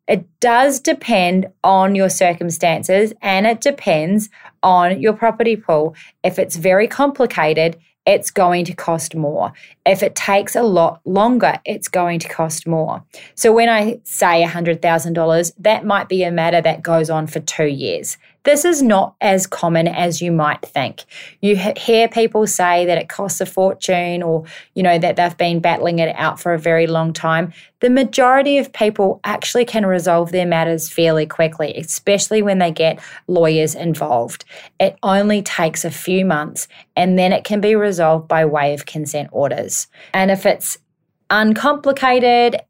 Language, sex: English, female